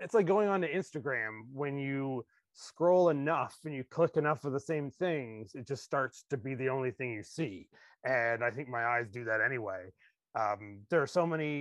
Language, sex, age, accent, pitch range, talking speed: English, male, 30-49, American, 120-145 Hz, 210 wpm